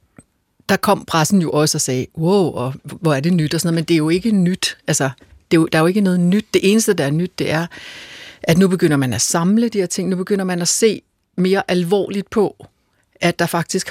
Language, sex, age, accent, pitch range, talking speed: Danish, female, 60-79, native, 155-195 Hz, 250 wpm